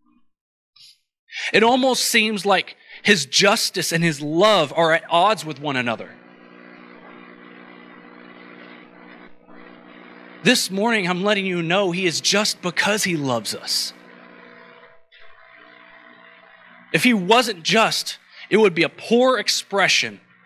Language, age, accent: English, 30-49, American